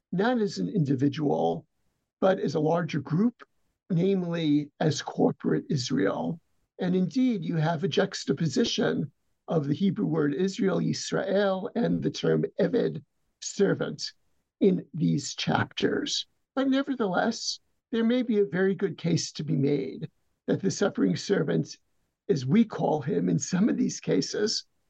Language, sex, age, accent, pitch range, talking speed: English, male, 60-79, American, 160-220 Hz, 140 wpm